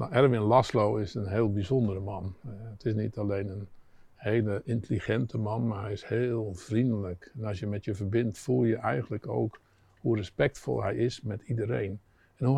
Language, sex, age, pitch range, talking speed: Dutch, male, 50-69, 100-120 Hz, 190 wpm